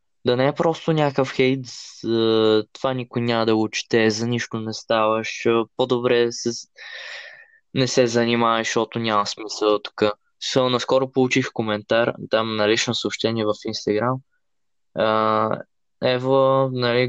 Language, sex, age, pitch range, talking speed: Bulgarian, male, 20-39, 110-135 Hz, 125 wpm